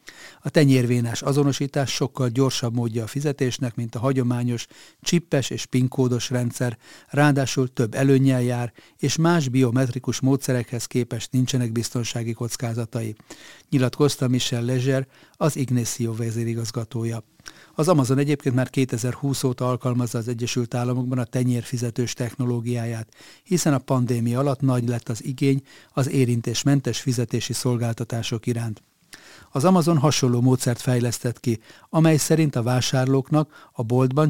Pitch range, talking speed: 120-135 Hz, 125 wpm